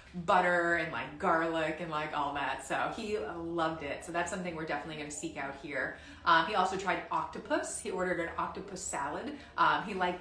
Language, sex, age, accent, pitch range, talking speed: English, female, 30-49, American, 165-225 Hz, 205 wpm